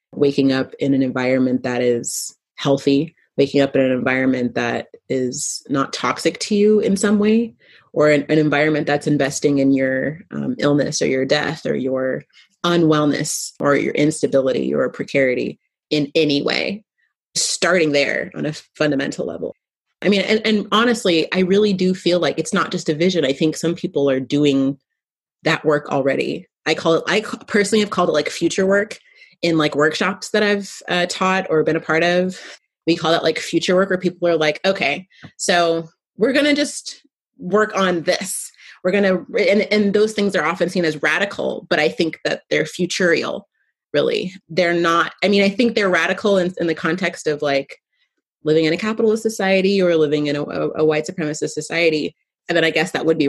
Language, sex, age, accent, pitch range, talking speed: English, female, 30-49, American, 145-195 Hz, 195 wpm